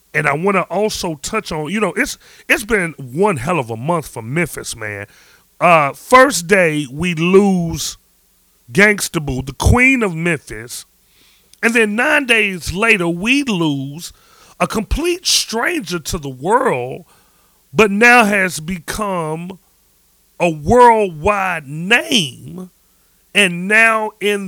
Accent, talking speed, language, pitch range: American, 130 wpm, English, 155-210 Hz